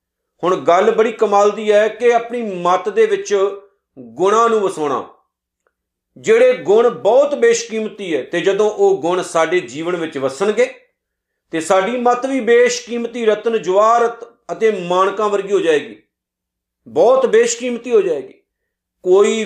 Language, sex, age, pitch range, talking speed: Punjabi, male, 50-69, 180-240 Hz, 135 wpm